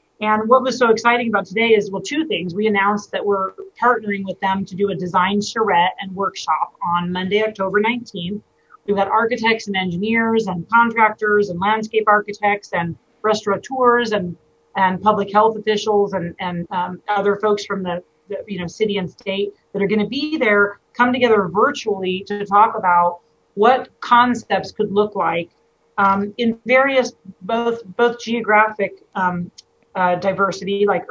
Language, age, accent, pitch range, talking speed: English, 40-59, American, 190-220 Hz, 165 wpm